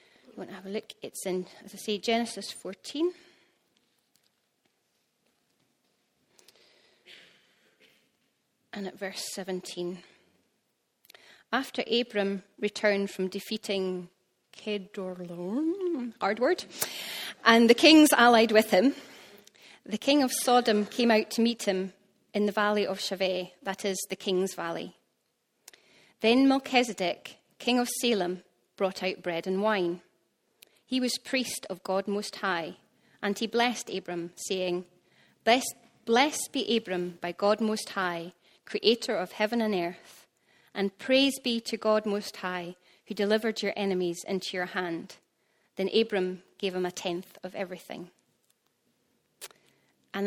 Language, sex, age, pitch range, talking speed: English, female, 30-49, 185-230 Hz, 130 wpm